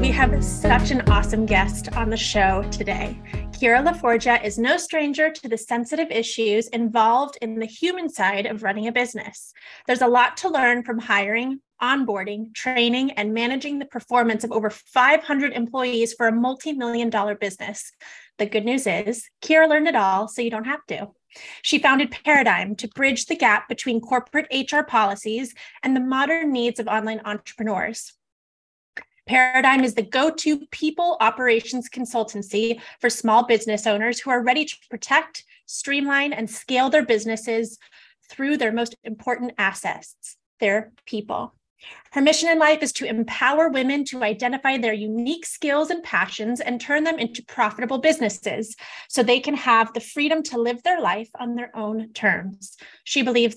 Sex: female